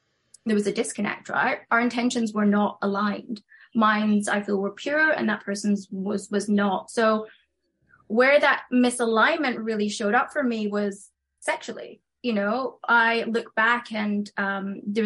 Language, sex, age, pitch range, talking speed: English, female, 20-39, 205-240 Hz, 160 wpm